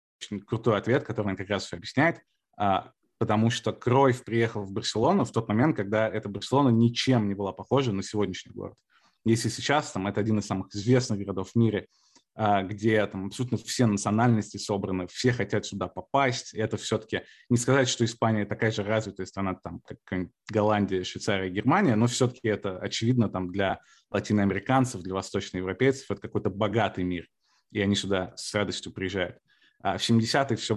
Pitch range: 100-120 Hz